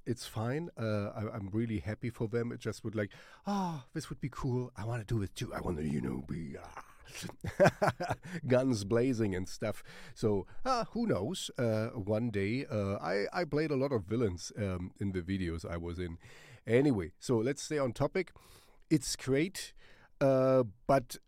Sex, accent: male, German